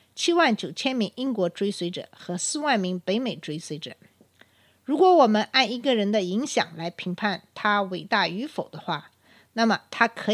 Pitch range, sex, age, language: 180-250 Hz, female, 50-69, Chinese